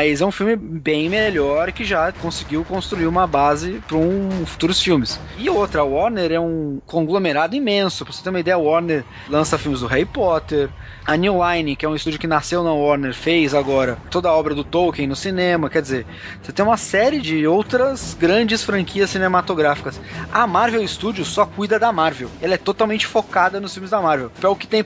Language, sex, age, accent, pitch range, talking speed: Portuguese, male, 20-39, Brazilian, 150-210 Hz, 205 wpm